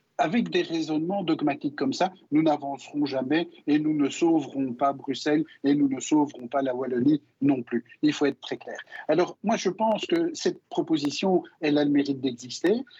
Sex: male